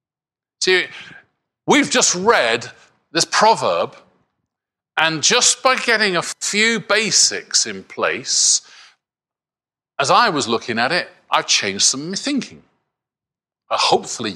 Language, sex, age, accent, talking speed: English, male, 40-59, British, 110 wpm